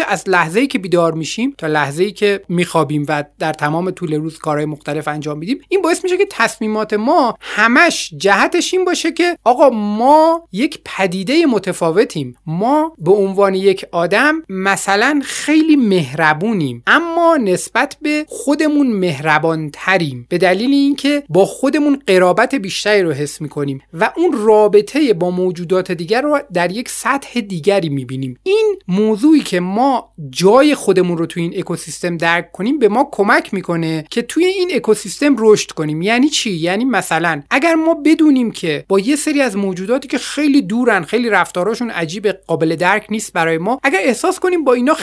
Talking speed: 165 wpm